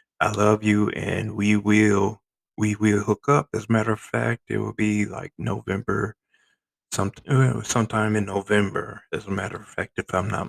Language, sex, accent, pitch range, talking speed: English, male, American, 100-130 Hz, 175 wpm